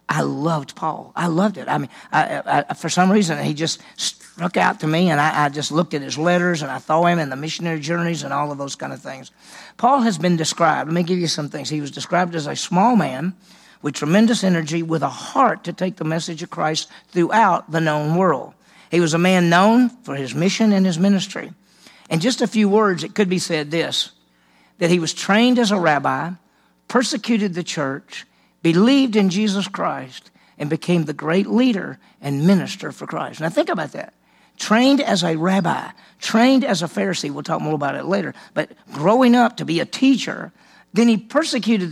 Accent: American